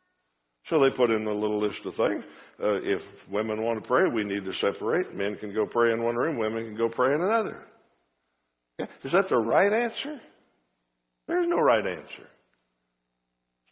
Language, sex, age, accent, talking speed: English, male, 60-79, American, 190 wpm